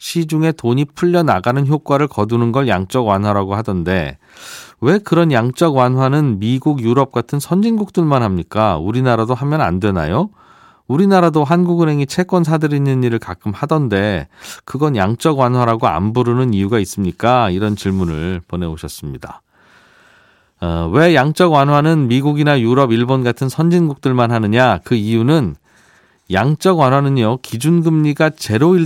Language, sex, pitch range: Korean, male, 115-155 Hz